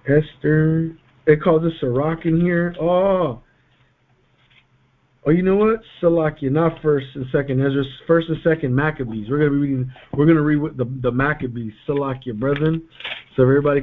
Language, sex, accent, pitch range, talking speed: English, male, American, 125-155 Hz, 165 wpm